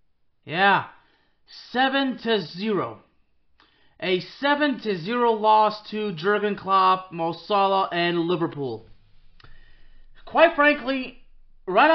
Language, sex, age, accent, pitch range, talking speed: English, male, 30-49, American, 180-245 Hz, 90 wpm